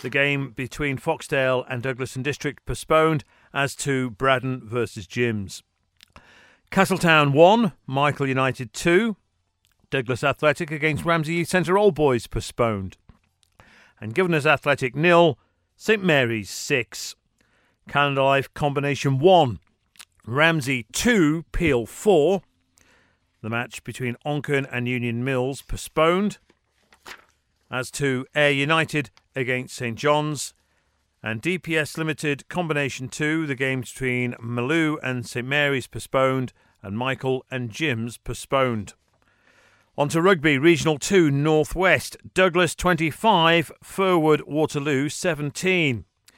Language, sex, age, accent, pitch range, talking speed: English, male, 50-69, British, 120-160 Hz, 115 wpm